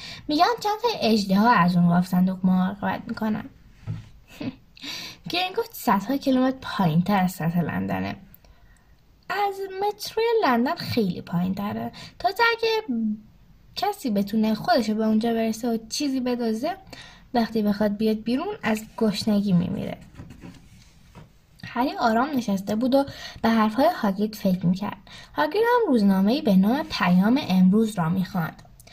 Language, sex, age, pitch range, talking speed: Persian, female, 10-29, 200-295 Hz, 125 wpm